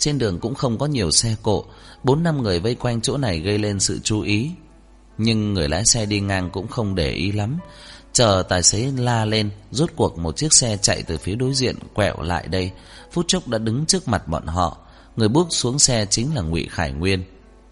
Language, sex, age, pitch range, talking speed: Vietnamese, male, 20-39, 85-115 Hz, 225 wpm